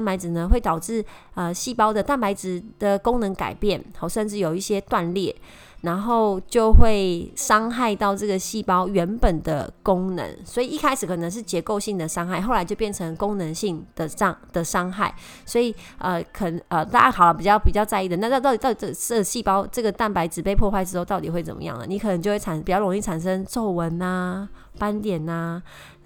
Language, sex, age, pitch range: Chinese, female, 20-39, 175-220 Hz